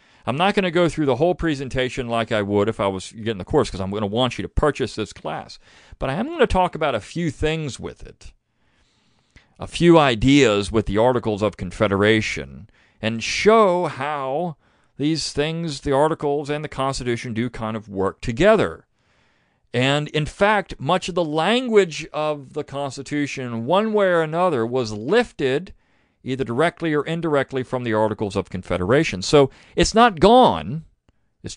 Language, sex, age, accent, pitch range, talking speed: English, male, 40-59, American, 105-160 Hz, 175 wpm